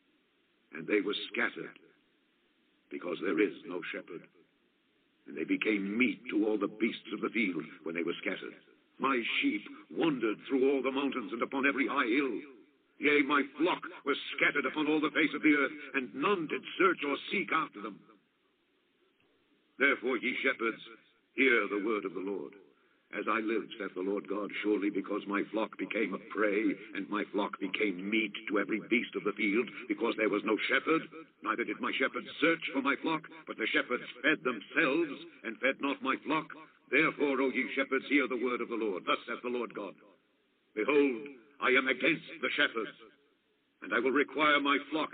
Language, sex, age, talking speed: English, male, 70-89, 185 wpm